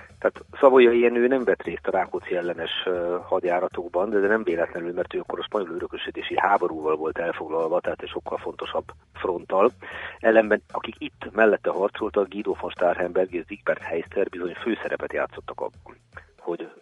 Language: Hungarian